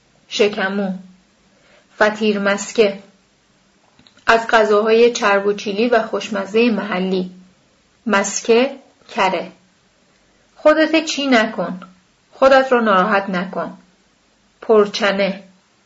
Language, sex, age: Persian, female, 30-49